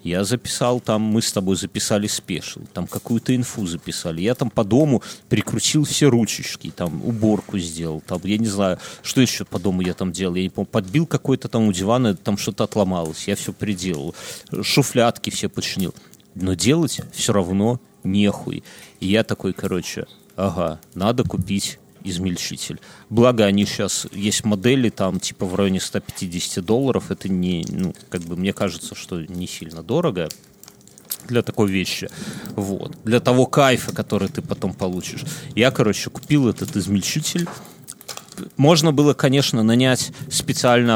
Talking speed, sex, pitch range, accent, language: 155 wpm, male, 95-130 Hz, native, Russian